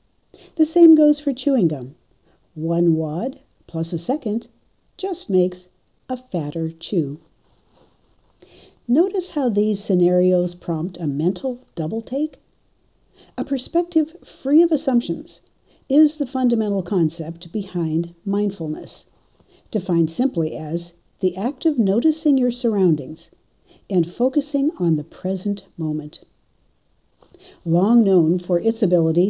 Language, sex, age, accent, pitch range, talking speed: English, female, 60-79, American, 165-245 Hz, 115 wpm